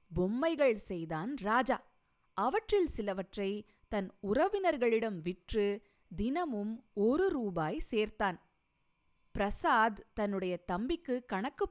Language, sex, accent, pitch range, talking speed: Tamil, female, native, 195-280 Hz, 80 wpm